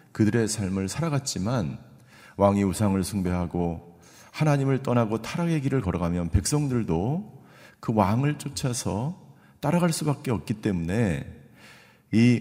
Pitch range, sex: 95-130 Hz, male